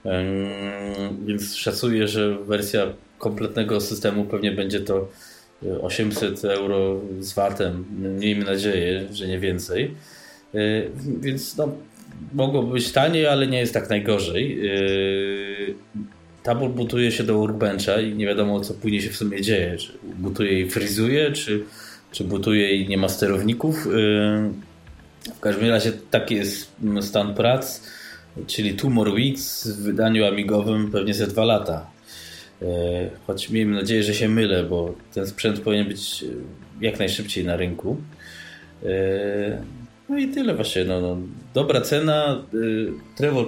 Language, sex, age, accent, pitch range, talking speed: Polish, male, 20-39, native, 100-115 Hz, 130 wpm